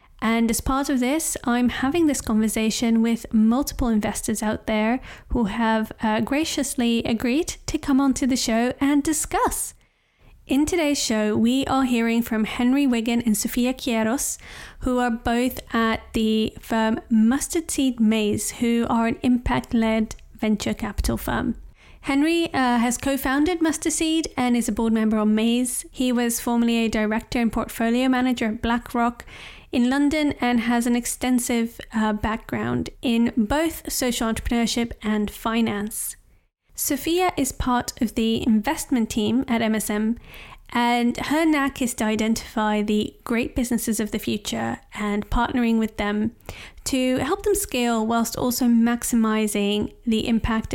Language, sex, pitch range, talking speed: English, female, 220-260 Hz, 145 wpm